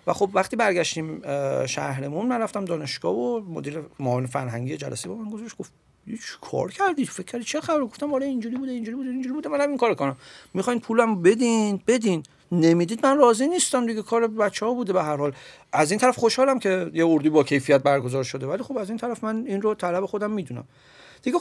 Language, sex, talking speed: Persian, male, 210 wpm